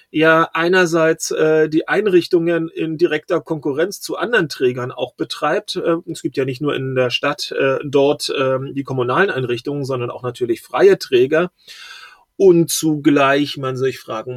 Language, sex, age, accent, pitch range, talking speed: German, male, 30-49, German, 135-180 Hz, 160 wpm